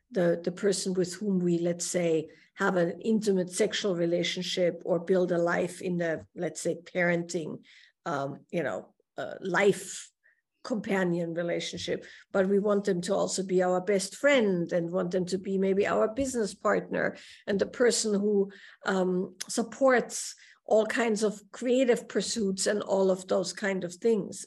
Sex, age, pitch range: female, 50-69, 180-210 Hz